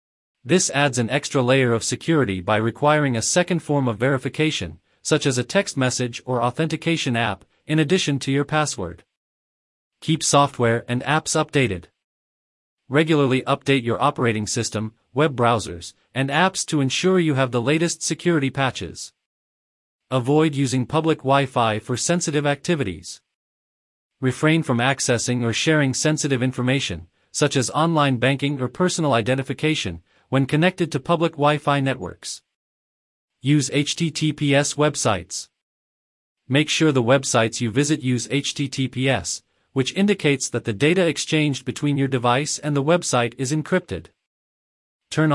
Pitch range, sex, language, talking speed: 120-150 Hz, male, English, 135 wpm